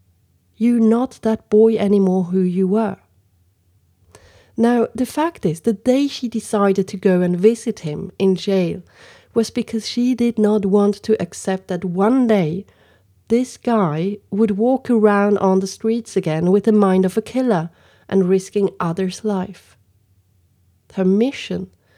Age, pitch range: 40-59, 160-220 Hz